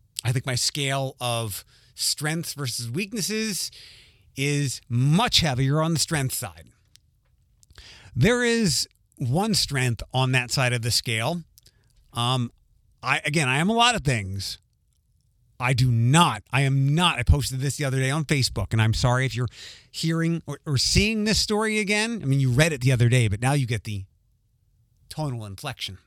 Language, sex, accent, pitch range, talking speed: English, male, American, 115-150 Hz, 175 wpm